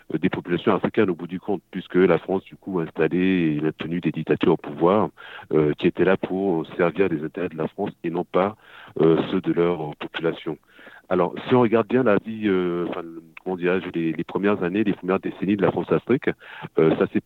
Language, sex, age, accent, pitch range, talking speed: English, male, 40-59, French, 80-100 Hz, 220 wpm